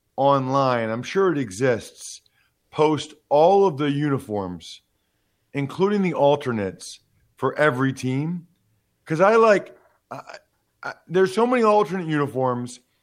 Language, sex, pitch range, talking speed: English, male, 130-185 Hz, 110 wpm